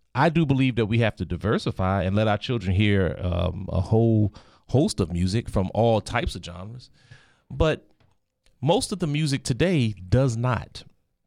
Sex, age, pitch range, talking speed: male, 40-59, 100-125 Hz, 170 wpm